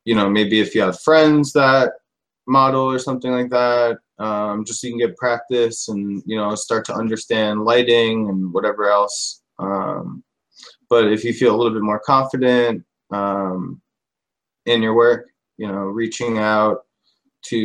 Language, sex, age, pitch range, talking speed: English, male, 20-39, 105-125 Hz, 165 wpm